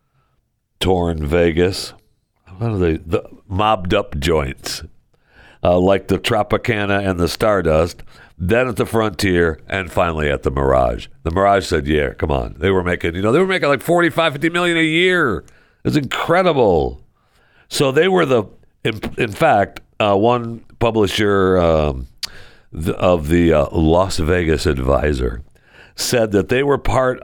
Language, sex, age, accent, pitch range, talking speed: English, male, 60-79, American, 80-115 Hz, 150 wpm